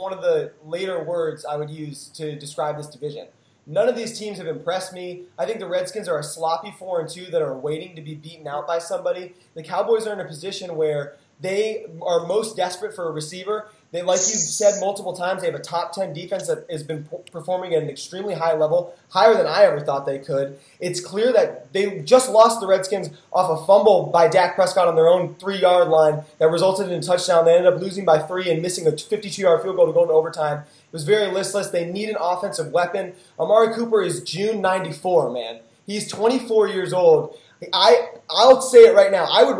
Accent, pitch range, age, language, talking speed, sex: American, 165-205 Hz, 20-39, English, 225 wpm, male